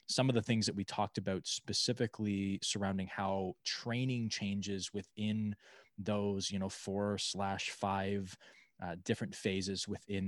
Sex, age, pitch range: male, 20-39, 95-115 Hz